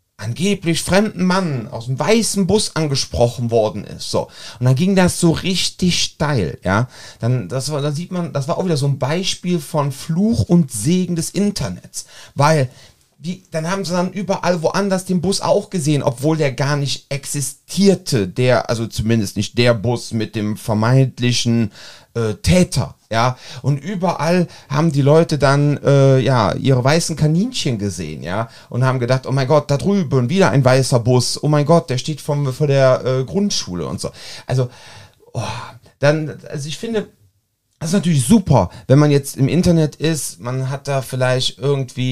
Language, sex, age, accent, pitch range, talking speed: German, male, 40-59, German, 120-160 Hz, 175 wpm